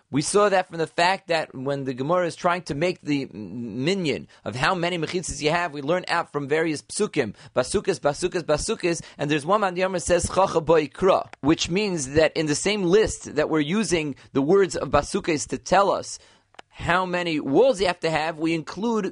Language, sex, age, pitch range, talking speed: English, male, 30-49, 145-190 Hz, 205 wpm